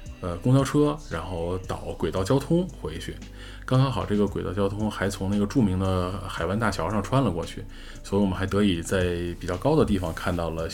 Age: 20-39